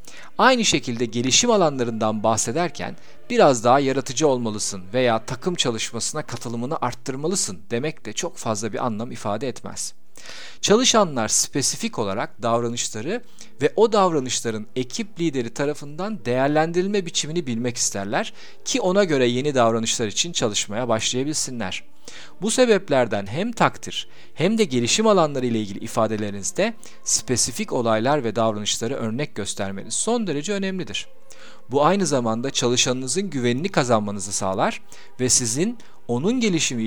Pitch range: 115-170 Hz